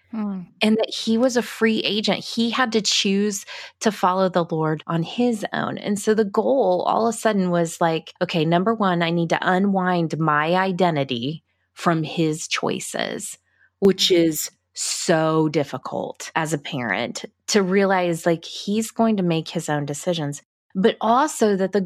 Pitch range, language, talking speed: 170-210 Hz, English, 165 wpm